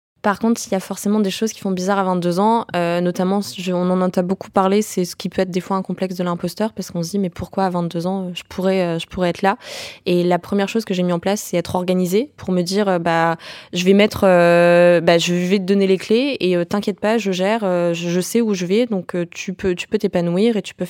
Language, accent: French, French